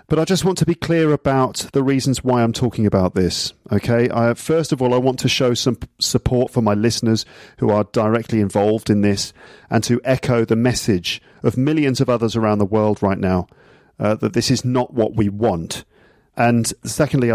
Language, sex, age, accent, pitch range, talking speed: English, male, 40-59, British, 110-135 Hz, 200 wpm